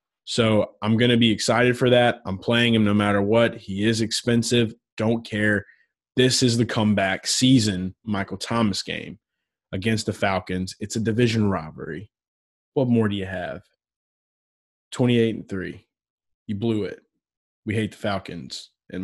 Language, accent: English, American